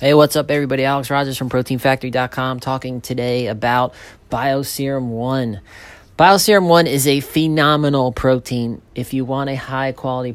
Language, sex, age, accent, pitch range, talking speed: English, male, 30-49, American, 105-135 Hz, 145 wpm